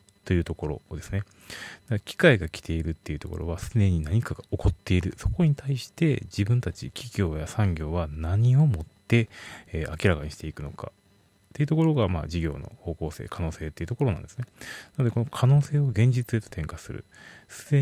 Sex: male